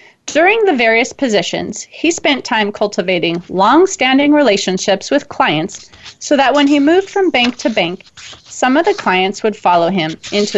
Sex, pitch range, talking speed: female, 190-280 Hz, 165 wpm